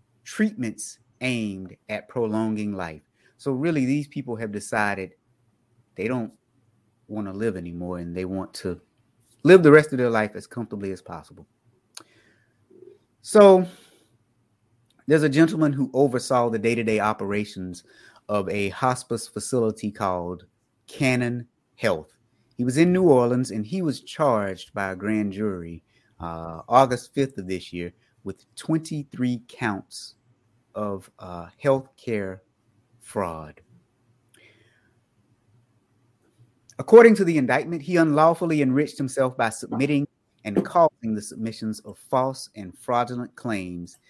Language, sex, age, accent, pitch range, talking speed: English, male, 30-49, American, 105-130 Hz, 130 wpm